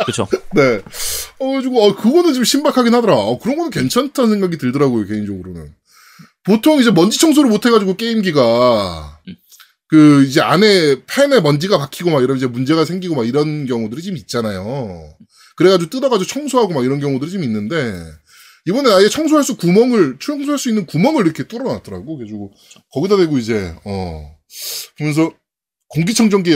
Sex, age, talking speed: male, 20-39, 145 wpm